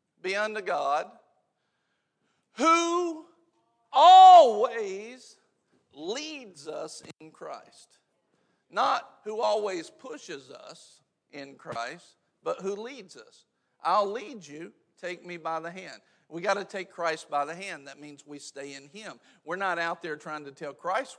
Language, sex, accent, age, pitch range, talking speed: English, male, American, 50-69, 150-200 Hz, 140 wpm